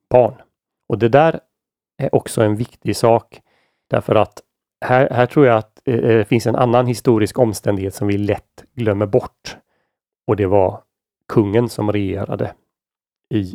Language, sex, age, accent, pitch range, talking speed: Swedish, male, 30-49, native, 100-120 Hz, 145 wpm